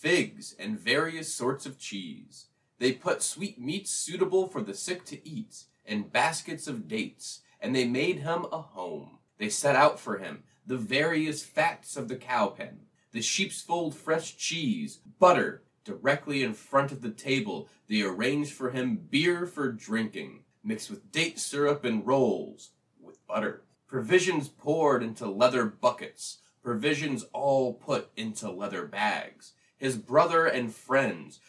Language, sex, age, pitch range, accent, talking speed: English, male, 30-49, 125-170 Hz, American, 150 wpm